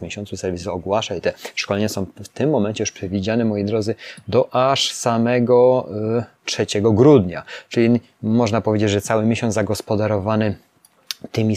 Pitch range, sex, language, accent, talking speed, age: 100-115 Hz, male, Polish, native, 145 wpm, 20-39